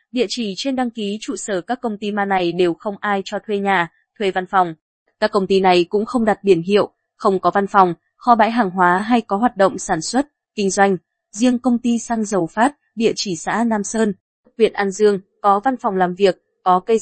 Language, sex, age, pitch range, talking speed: Vietnamese, female, 20-39, 185-235 Hz, 235 wpm